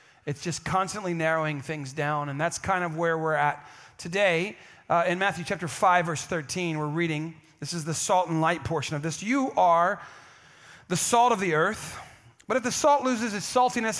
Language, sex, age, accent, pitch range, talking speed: English, male, 30-49, American, 165-205 Hz, 195 wpm